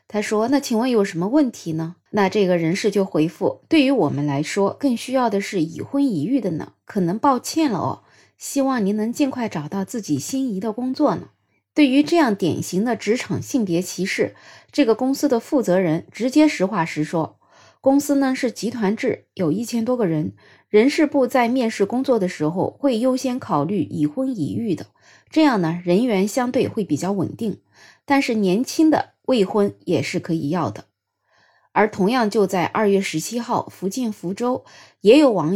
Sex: female